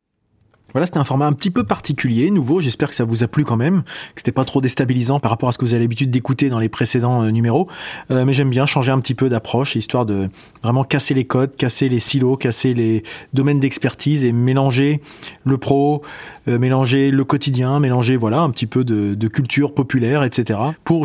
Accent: French